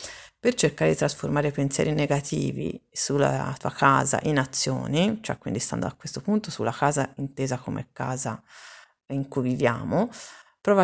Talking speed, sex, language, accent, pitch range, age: 150 wpm, female, Italian, native, 130-175 Hz, 40-59